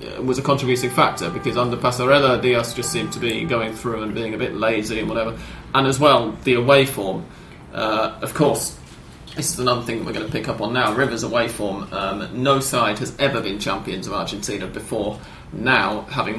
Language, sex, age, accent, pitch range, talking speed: English, male, 30-49, British, 110-130 Hz, 205 wpm